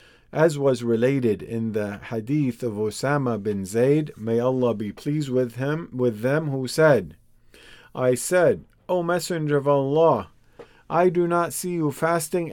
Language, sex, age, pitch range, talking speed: English, male, 50-69, 120-155 Hz, 155 wpm